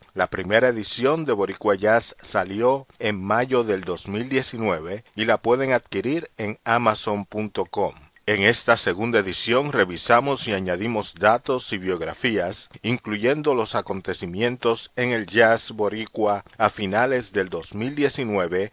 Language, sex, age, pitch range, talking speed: Spanish, male, 50-69, 100-120 Hz, 120 wpm